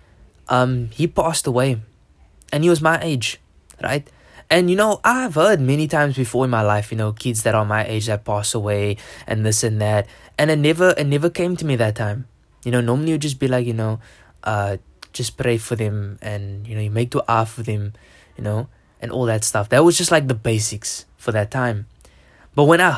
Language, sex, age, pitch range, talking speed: English, male, 10-29, 110-150 Hz, 220 wpm